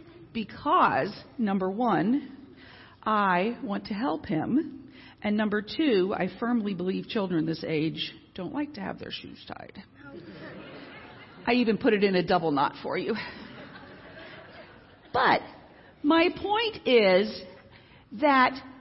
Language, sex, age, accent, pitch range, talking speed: English, female, 50-69, American, 195-265 Hz, 125 wpm